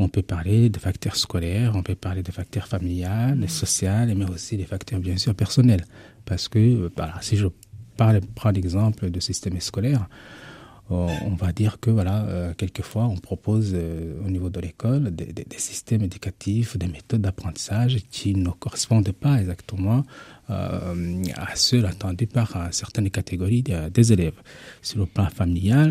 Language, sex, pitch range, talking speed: French, male, 95-115 Hz, 165 wpm